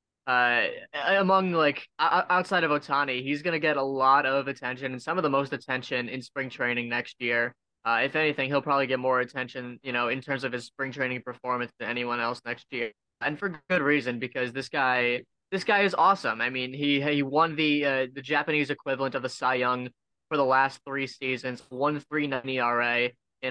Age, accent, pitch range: 20-39, American, 125-145 Hz